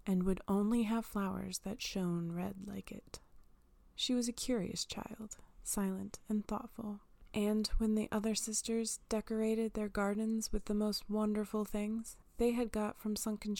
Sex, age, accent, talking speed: female, 20-39, American, 160 wpm